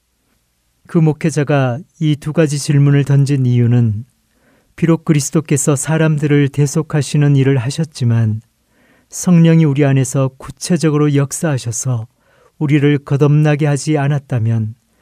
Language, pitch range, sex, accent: Korean, 120-150 Hz, male, native